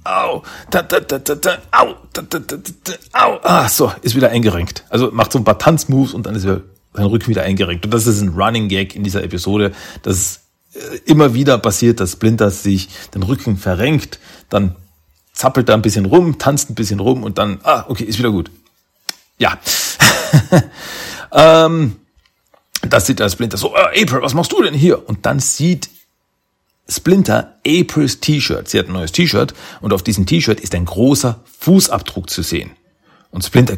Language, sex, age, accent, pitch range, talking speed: German, male, 40-59, German, 95-130 Hz, 160 wpm